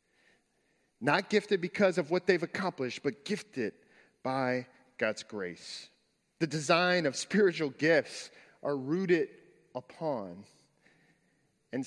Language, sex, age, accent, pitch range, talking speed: English, male, 40-59, American, 145-200 Hz, 105 wpm